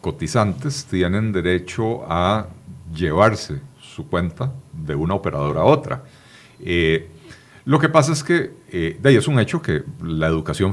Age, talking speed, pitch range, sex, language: 40-59, 150 wpm, 90-130 Hz, male, Spanish